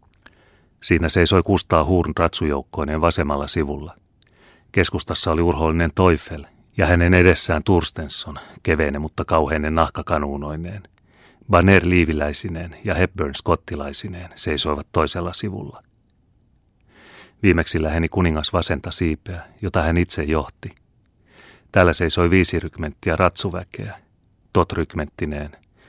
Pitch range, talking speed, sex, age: 75-90 Hz, 95 wpm, male, 30-49